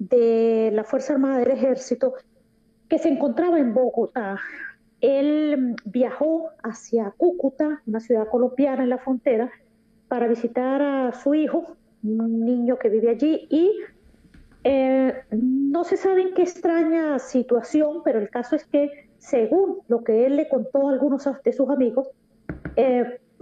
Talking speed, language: 145 wpm, Spanish